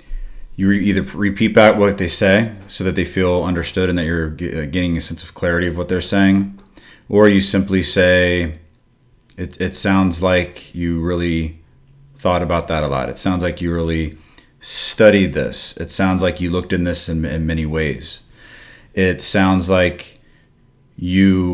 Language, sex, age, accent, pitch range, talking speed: English, male, 30-49, American, 85-100 Hz, 170 wpm